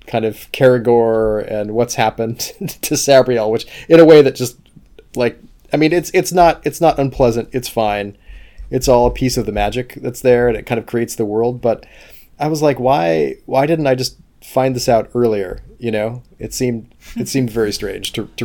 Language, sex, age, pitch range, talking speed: English, male, 20-39, 105-125 Hz, 210 wpm